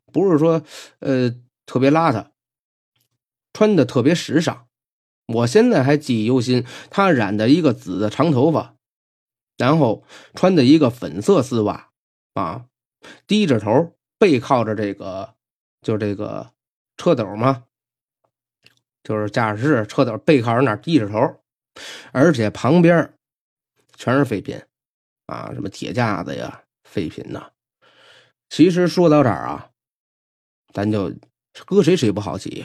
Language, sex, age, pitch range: Chinese, male, 30-49, 105-140 Hz